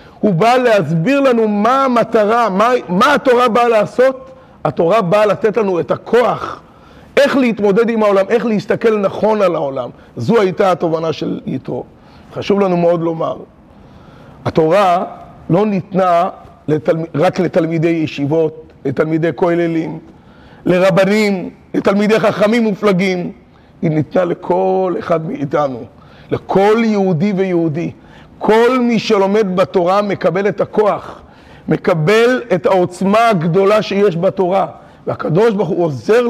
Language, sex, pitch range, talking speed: Hebrew, male, 175-215 Hz, 120 wpm